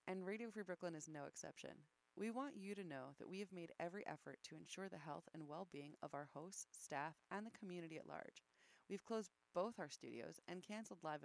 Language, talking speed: English, 220 wpm